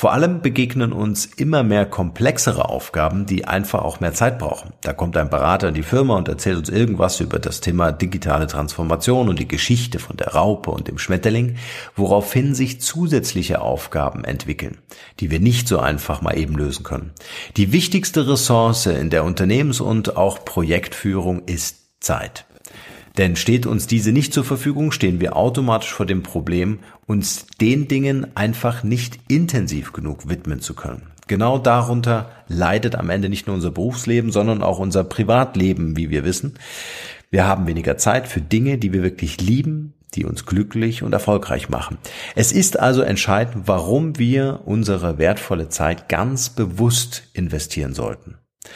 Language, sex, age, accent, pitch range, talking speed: German, male, 50-69, German, 90-120 Hz, 160 wpm